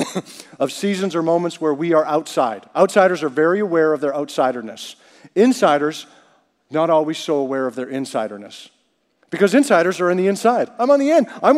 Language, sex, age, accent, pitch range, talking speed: English, male, 50-69, American, 165-210 Hz, 175 wpm